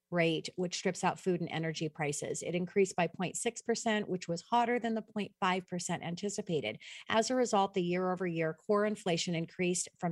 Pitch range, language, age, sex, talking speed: 175-210 Hz, English, 40-59, female, 165 wpm